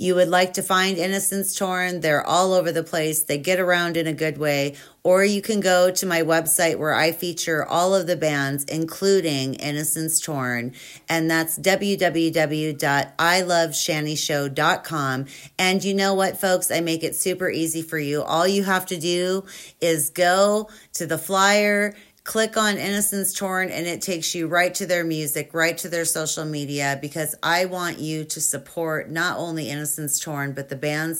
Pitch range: 155-185 Hz